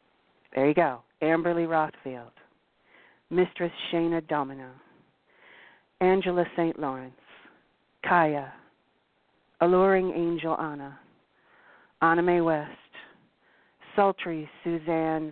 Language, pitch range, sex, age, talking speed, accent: English, 150-185 Hz, female, 50-69, 80 wpm, American